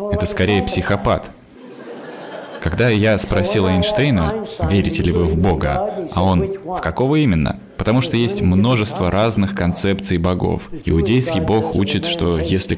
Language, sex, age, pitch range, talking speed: Russian, male, 20-39, 90-115 Hz, 135 wpm